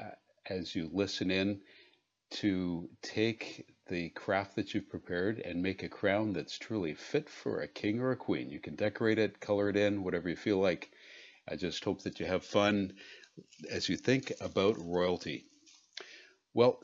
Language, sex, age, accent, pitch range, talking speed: English, male, 50-69, American, 95-120 Hz, 170 wpm